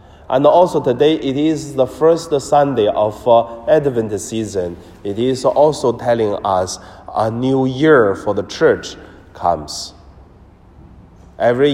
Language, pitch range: Chinese, 95-130 Hz